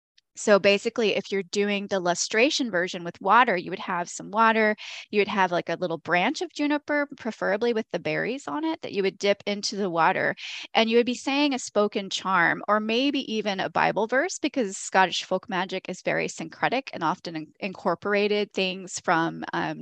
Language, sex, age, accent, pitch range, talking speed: English, female, 20-39, American, 185-245 Hz, 195 wpm